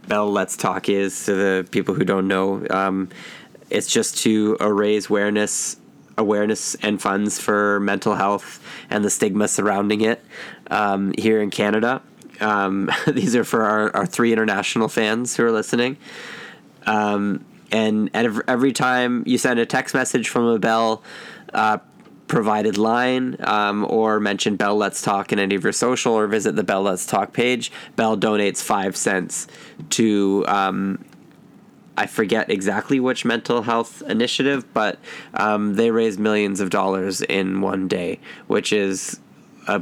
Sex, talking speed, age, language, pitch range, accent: male, 155 wpm, 20-39, English, 100-110 Hz, American